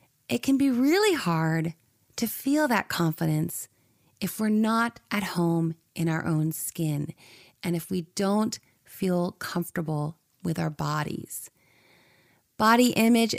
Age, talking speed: 30-49, 130 wpm